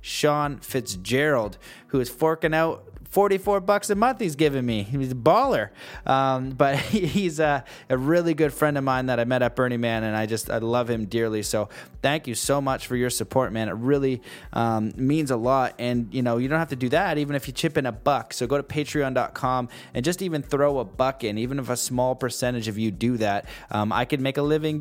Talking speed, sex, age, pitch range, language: 230 wpm, male, 20-39, 115-145 Hz, English